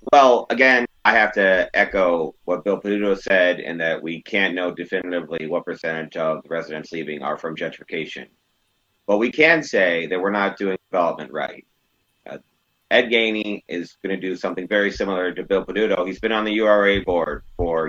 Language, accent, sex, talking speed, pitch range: English, American, male, 185 wpm, 85-105 Hz